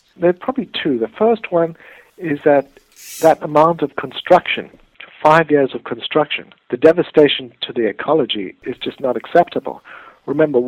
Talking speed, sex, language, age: 150 wpm, male, English, 60-79